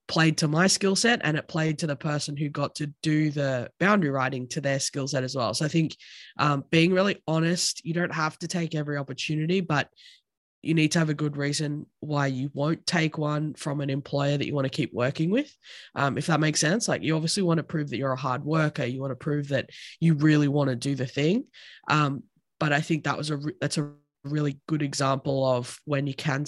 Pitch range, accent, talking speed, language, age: 135-155 Hz, Australian, 240 wpm, English, 20-39